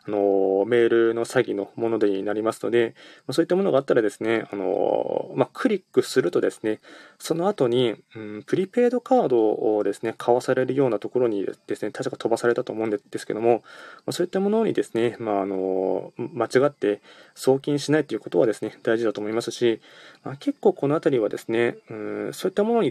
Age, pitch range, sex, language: 20-39, 110-180 Hz, male, Japanese